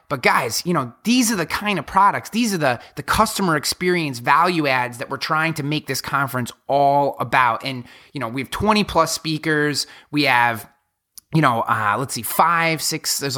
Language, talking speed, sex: English, 200 wpm, male